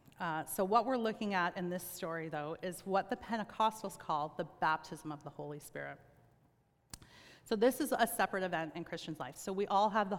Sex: female